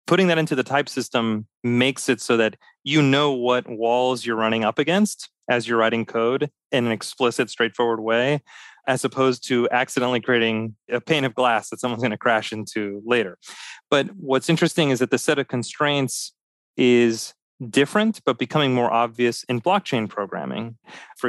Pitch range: 115-140 Hz